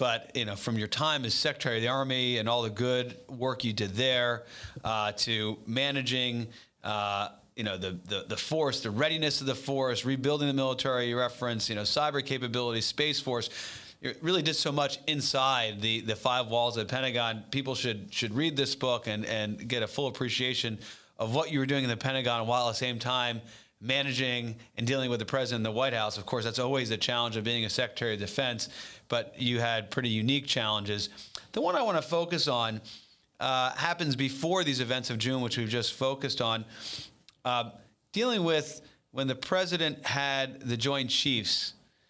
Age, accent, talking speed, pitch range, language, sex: 40-59, American, 200 wpm, 115-135 Hz, English, male